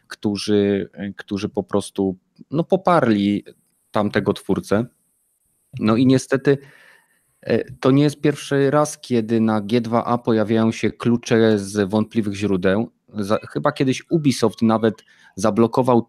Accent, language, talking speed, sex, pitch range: native, Polish, 110 wpm, male, 105-125 Hz